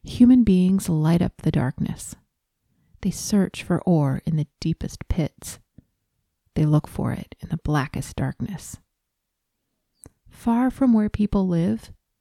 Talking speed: 135 wpm